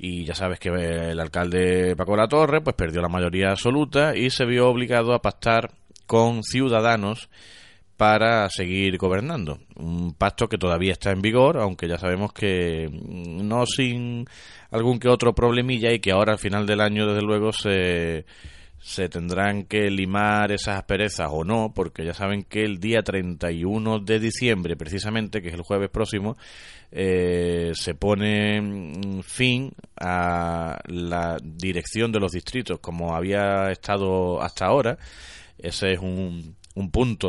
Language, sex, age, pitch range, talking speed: Spanish, male, 30-49, 90-110 Hz, 155 wpm